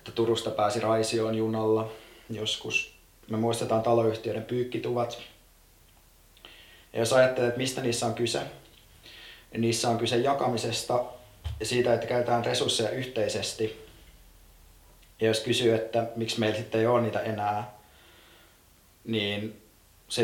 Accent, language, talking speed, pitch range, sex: native, Finnish, 120 wpm, 105-115 Hz, male